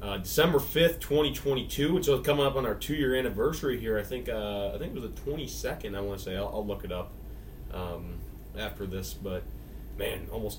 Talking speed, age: 210 wpm, 30-49